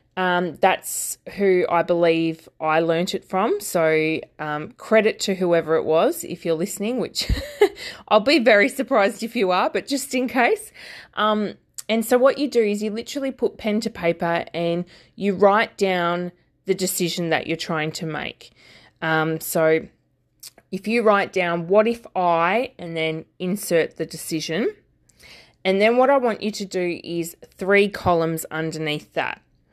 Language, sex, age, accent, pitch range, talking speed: English, female, 20-39, Australian, 165-210 Hz, 165 wpm